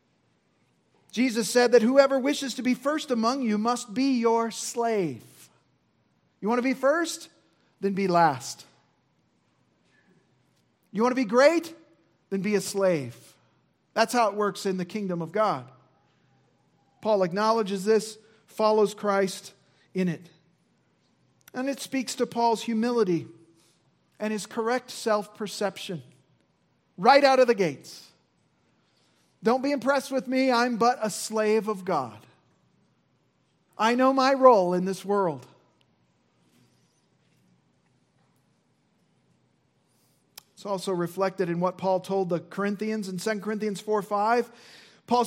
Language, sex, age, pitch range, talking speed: English, male, 40-59, 185-250 Hz, 125 wpm